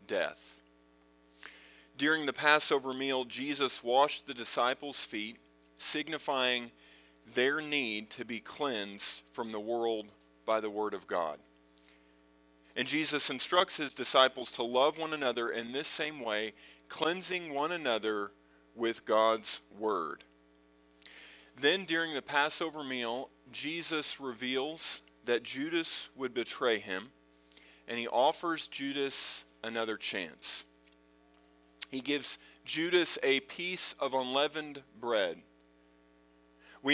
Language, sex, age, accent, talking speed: English, male, 40-59, American, 115 wpm